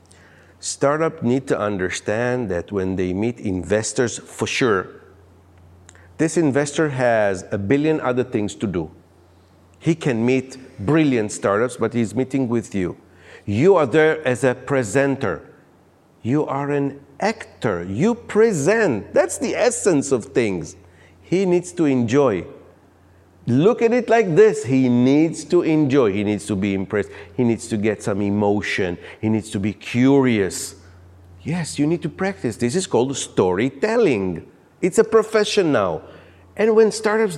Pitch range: 100-160 Hz